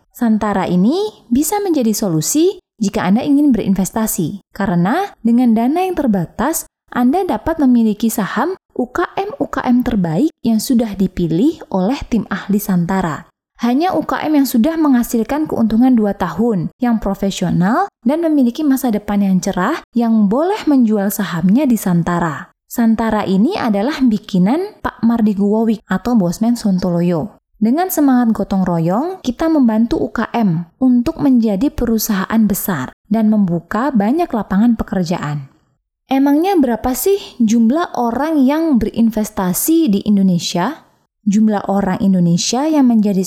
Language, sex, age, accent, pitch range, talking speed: Indonesian, female, 20-39, native, 200-270 Hz, 120 wpm